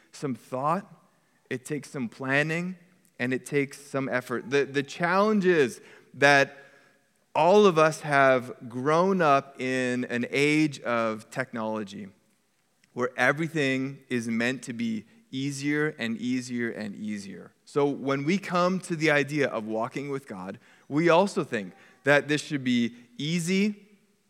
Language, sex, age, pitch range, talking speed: English, male, 20-39, 130-170 Hz, 140 wpm